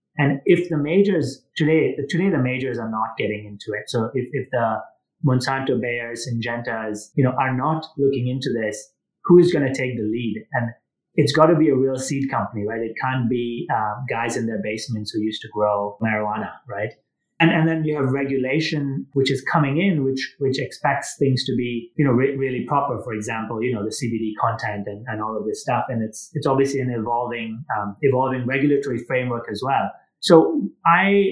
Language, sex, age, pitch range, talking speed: English, male, 30-49, 120-150 Hz, 205 wpm